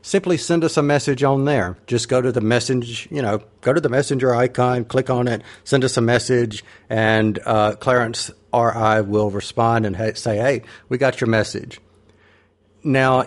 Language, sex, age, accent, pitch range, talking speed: English, male, 50-69, American, 105-130 Hz, 180 wpm